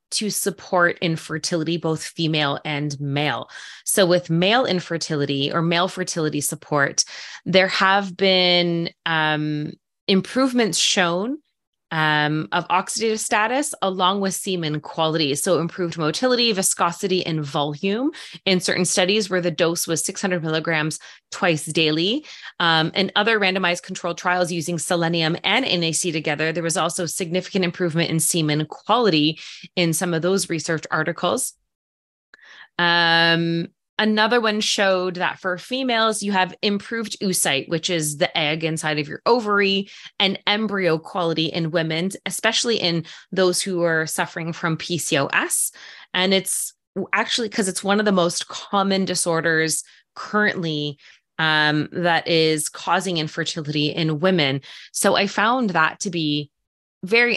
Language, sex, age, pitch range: English, female, 20-39, 160-195 Hz